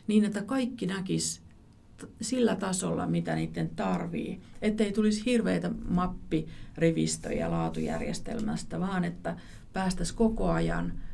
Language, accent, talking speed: Finnish, native, 100 wpm